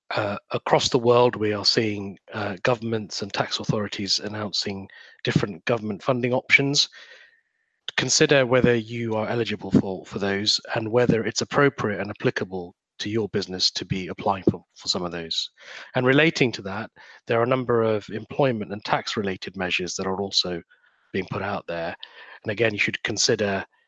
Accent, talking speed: British, 170 wpm